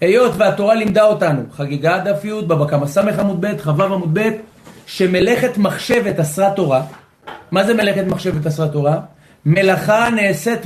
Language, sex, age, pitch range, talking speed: Hebrew, male, 40-59, 170-230 Hz, 130 wpm